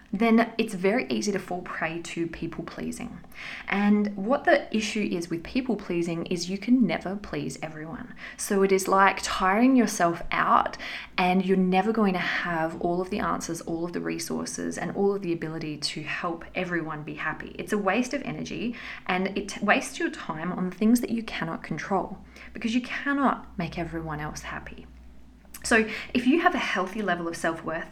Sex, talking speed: female, 185 wpm